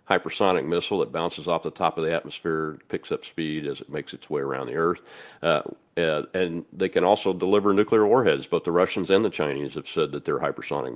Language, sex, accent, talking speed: English, male, American, 225 wpm